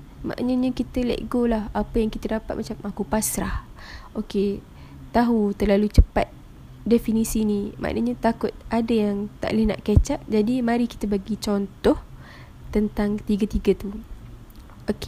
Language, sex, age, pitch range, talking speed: Malay, female, 10-29, 210-235 Hz, 145 wpm